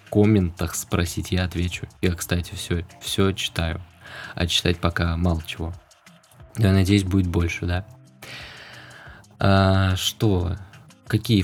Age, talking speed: 20-39, 120 wpm